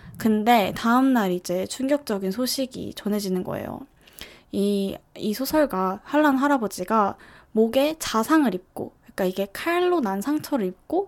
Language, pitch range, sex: Korean, 200-265 Hz, female